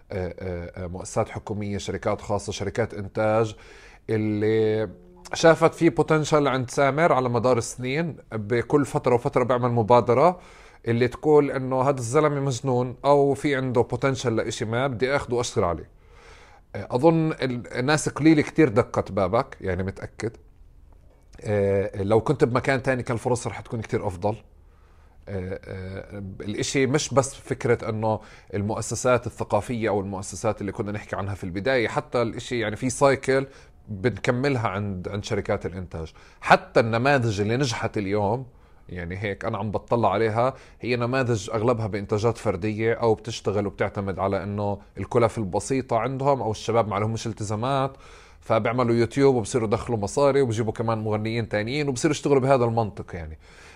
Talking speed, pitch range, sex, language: 135 wpm, 105-130 Hz, male, Arabic